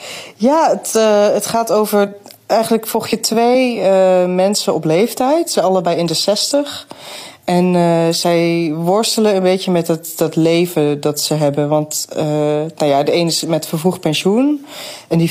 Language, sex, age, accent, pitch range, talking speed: Dutch, female, 20-39, Dutch, 160-200 Hz, 175 wpm